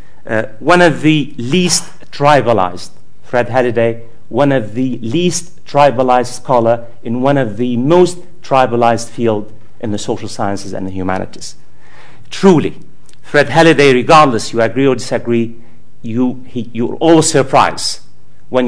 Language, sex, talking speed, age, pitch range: English, male, 130 wpm, 50-69, 105-135 Hz